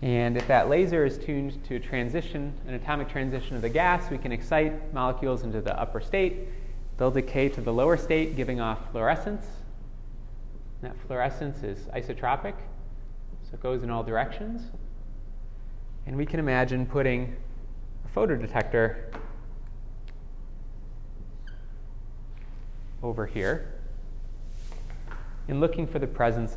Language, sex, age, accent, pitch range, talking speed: English, male, 30-49, American, 105-135 Hz, 125 wpm